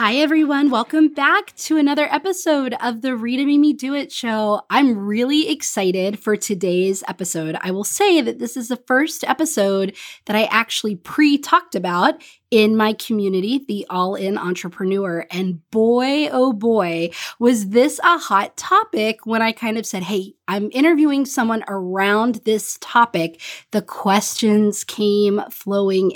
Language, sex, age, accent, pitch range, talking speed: English, female, 20-39, American, 200-275 Hz, 150 wpm